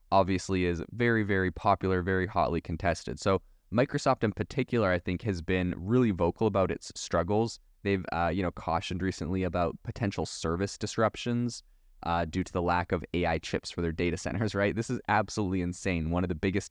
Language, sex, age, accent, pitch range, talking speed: English, male, 20-39, American, 85-105 Hz, 185 wpm